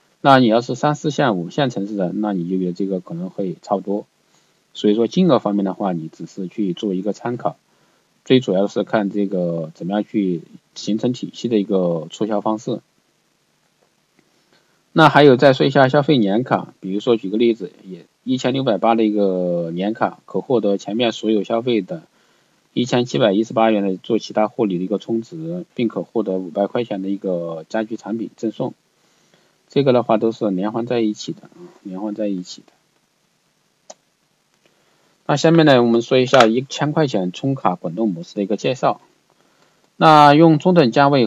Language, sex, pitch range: Chinese, male, 100-135 Hz